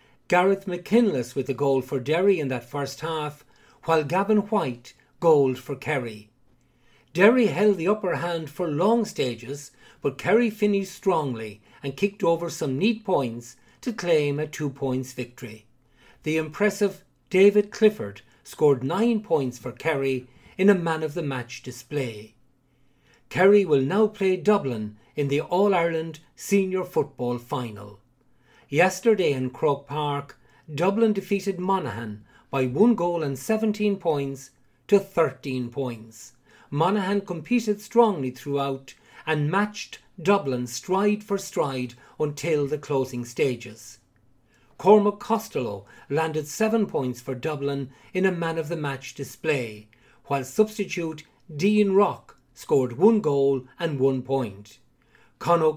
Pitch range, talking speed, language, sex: 130-195 Hz, 125 wpm, English, male